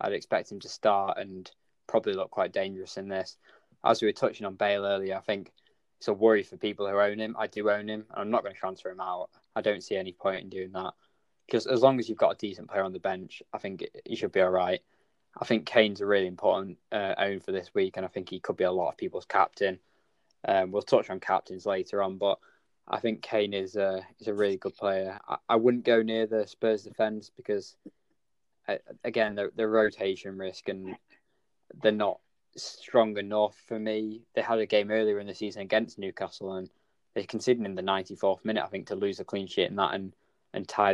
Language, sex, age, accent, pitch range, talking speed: English, male, 20-39, British, 95-115 Hz, 230 wpm